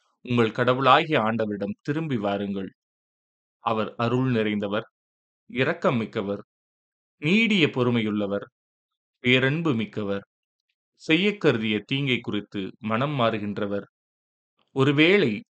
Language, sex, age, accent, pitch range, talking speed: Tamil, male, 30-49, native, 105-130 Hz, 75 wpm